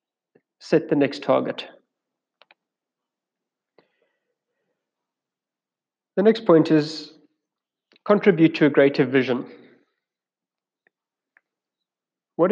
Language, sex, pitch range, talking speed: English, male, 140-180 Hz, 65 wpm